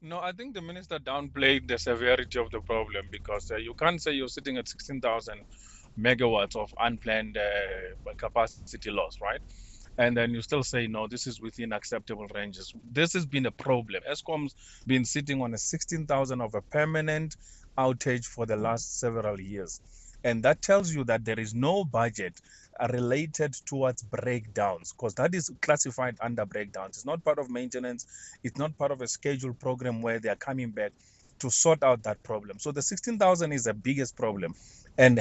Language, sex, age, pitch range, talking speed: English, male, 30-49, 115-150 Hz, 180 wpm